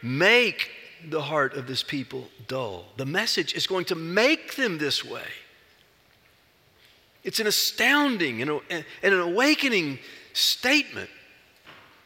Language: English